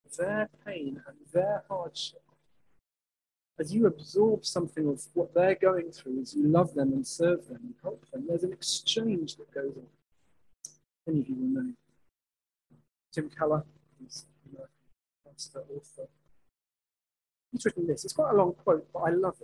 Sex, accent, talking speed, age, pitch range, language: male, British, 155 wpm, 40-59, 150-210 Hz, English